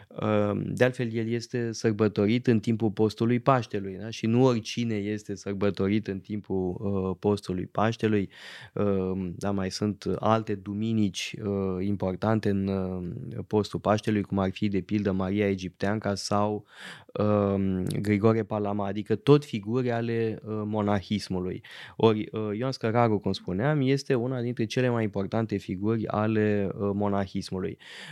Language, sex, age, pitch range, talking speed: Romanian, male, 20-39, 100-120 Hz, 120 wpm